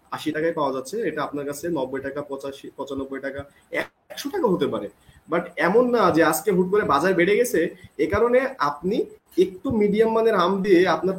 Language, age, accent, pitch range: Bengali, 30-49, native, 145-200 Hz